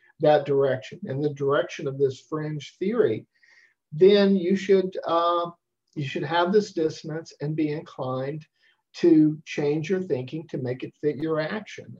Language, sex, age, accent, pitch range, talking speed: English, male, 50-69, American, 145-195 Hz, 155 wpm